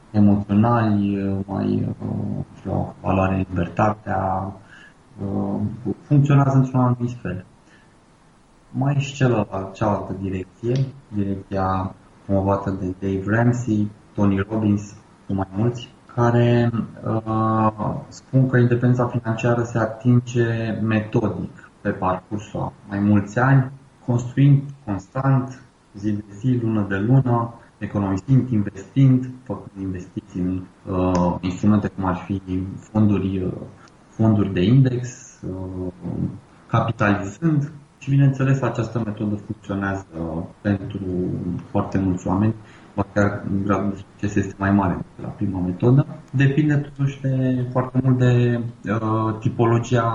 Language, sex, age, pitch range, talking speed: Romanian, male, 20-39, 100-120 Hz, 115 wpm